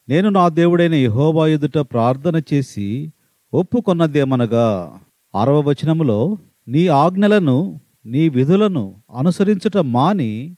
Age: 40-59